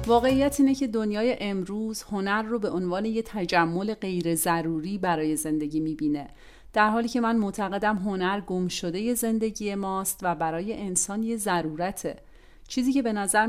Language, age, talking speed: Persian, 30-49, 155 wpm